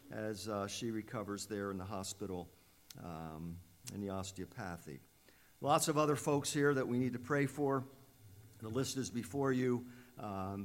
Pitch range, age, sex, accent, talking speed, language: 105-140 Hz, 50-69, male, American, 165 wpm, English